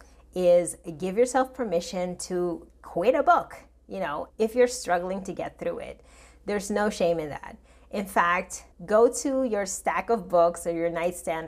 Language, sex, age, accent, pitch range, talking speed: English, female, 30-49, American, 170-230 Hz, 175 wpm